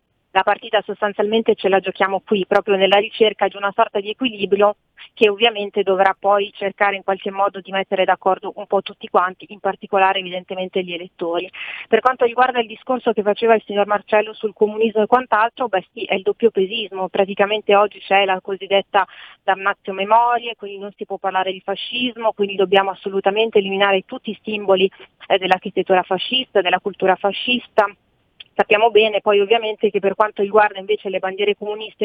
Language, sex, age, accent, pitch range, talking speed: Italian, female, 40-59, native, 195-215 Hz, 175 wpm